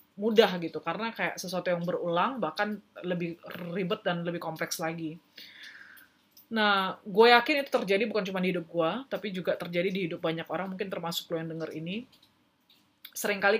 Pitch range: 165-195 Hz